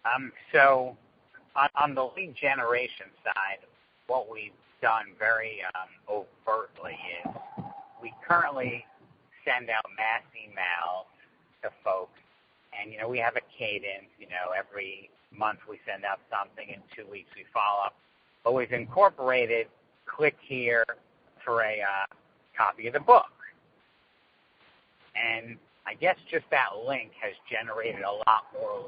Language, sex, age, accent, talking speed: English, male, 50-69, American, 140 wpm